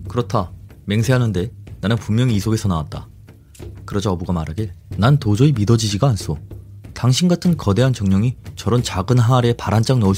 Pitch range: 95-120 Hz